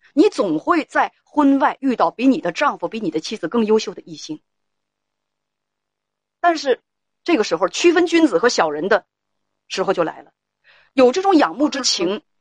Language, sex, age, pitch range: Chinese, female, 30-49, 215-330 Hz